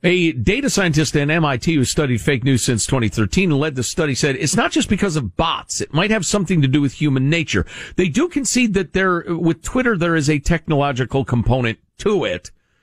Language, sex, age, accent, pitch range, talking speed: English, male, 50-69, American, 100-160 Hz, 210 wpm